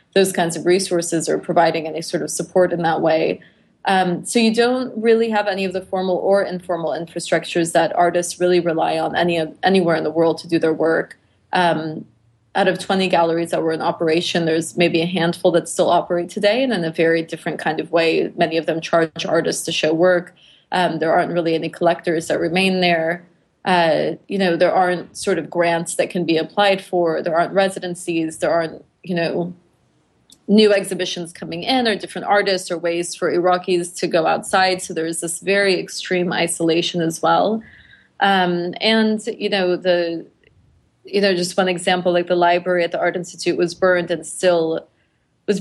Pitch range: 165-185 Hz